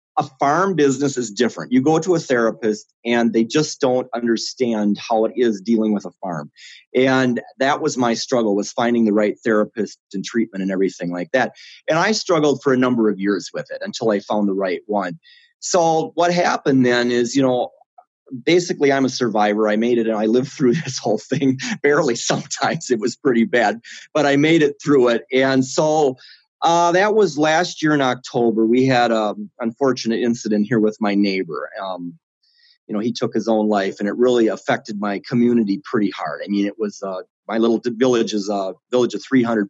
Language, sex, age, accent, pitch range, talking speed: English, male, 30-49, American, 110-145 Hz, 205 wpm